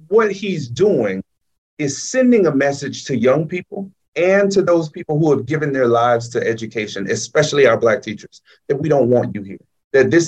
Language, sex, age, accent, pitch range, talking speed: English, male, 30-49, American, 125-180 Hz, 195 wpm